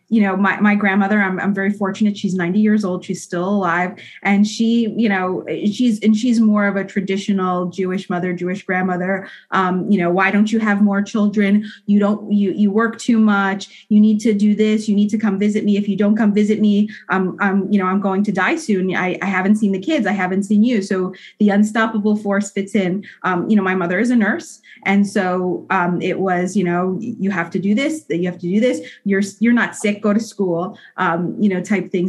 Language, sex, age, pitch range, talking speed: English, female, 20-39, 185-210 Hz, 240 wpm